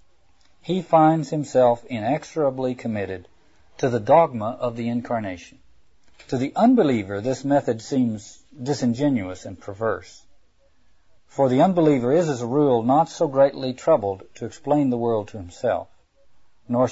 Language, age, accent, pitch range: English, 50-69, American, 105-140 Hz